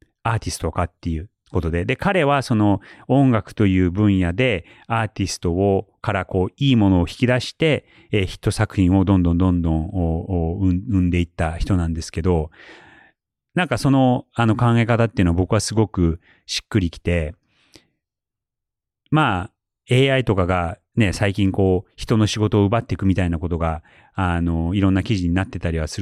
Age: 40-59